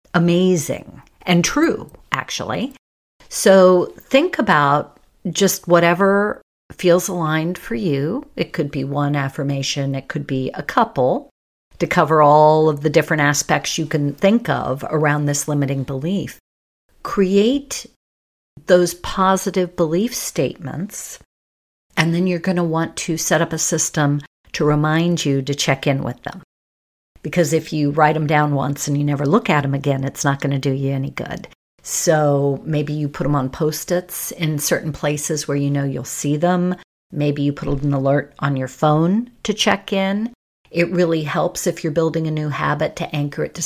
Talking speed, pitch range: 170 wpm, 145-175 Hz